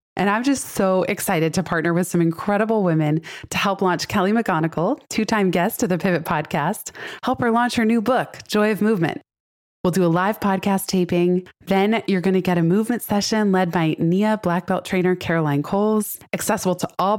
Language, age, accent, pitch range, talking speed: English, 20-39, American, 170-210 Hz, 195 wpm